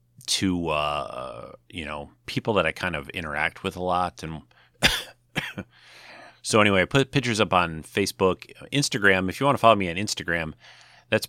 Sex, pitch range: male, 80-100 Hz